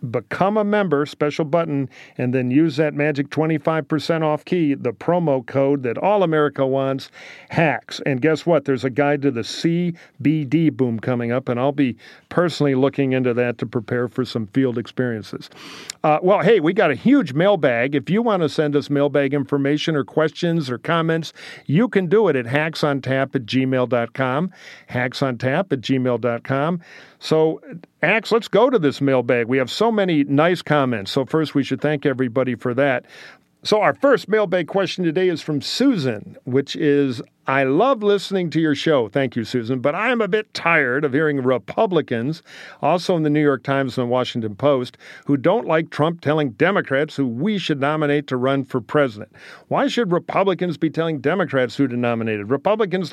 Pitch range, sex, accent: 135-170 Hz, male, American